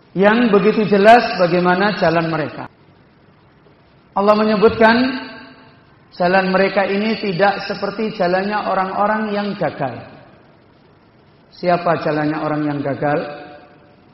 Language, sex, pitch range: Indonesian, male, 155-220 Hz